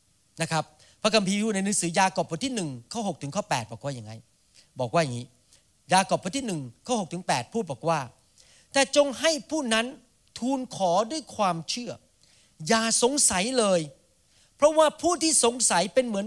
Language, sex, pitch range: Thai, male, 145-230 Hz